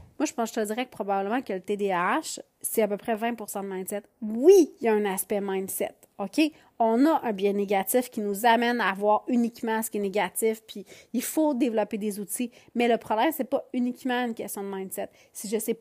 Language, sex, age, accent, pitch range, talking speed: French, female, 30-49, Canadian, 210-275 Hz, 235 wpm